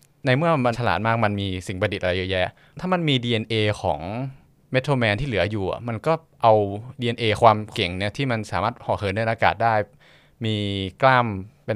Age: 20-39